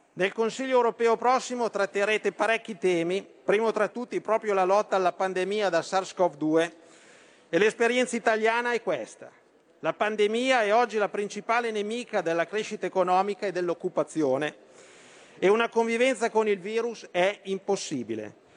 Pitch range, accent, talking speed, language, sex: 185-225 Hz, native, 135 wpm, Italian, male